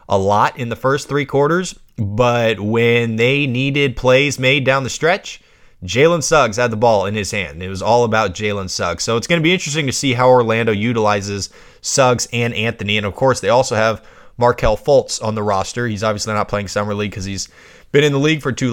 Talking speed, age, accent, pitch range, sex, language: 220 wpm, 20-39, American, 105-130 Hz, male, English